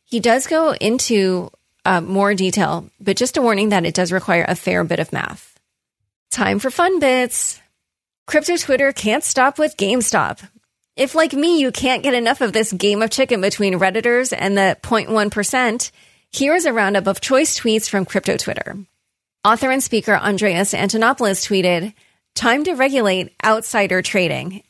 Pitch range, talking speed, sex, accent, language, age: 185-240 Hz, 165 wpm, female, American, English, 30-49